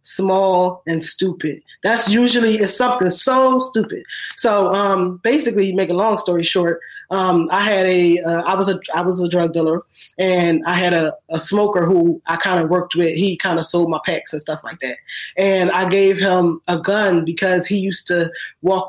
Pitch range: 175-205 Hz